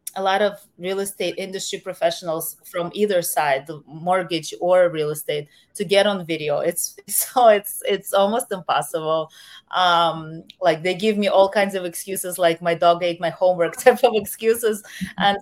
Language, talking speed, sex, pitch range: English, 170 wpm, female, 165-195 Hz